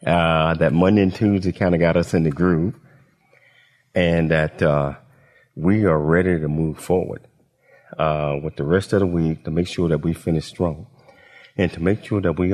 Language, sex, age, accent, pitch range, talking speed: English, male, 40-59, American, 75-95 Hz, 195 wpm